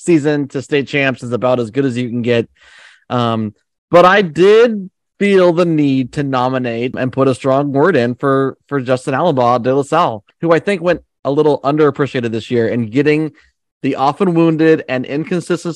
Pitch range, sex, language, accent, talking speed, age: 120-155 Hz, male, English, American, 190 wpm, 30-49